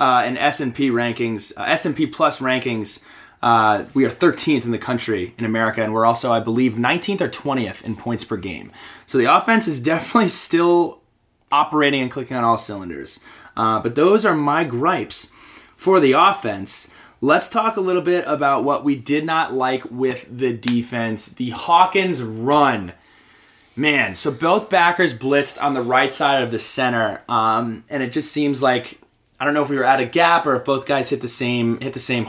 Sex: male